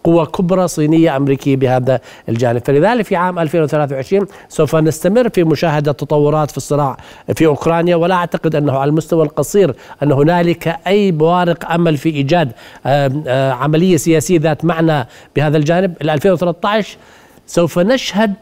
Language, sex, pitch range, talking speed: Arabic, male, 155-205 Hz, 135 wpm